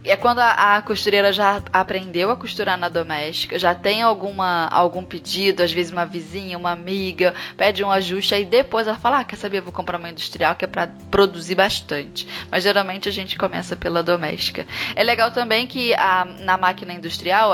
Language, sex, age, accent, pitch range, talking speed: Portuguese, female, 10-29, Brazilian, 180-225 Hz, 190 wpm